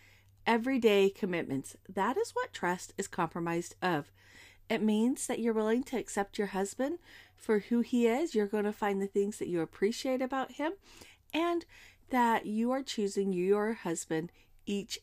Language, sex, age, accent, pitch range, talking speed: English, female, 40-59, American, 195-255 Hz, 165 wpm